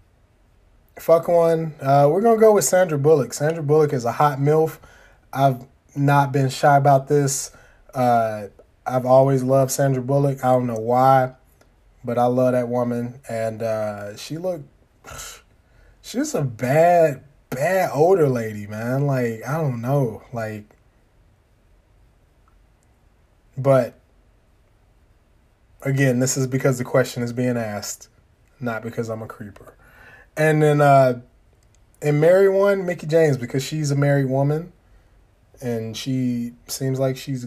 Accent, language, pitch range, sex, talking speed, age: American, English, 100-140 Hz, male, 140 wpm, 20-39